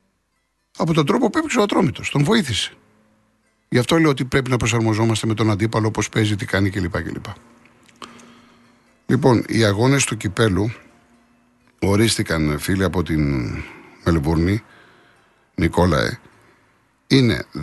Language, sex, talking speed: Greek, male, 120 wpm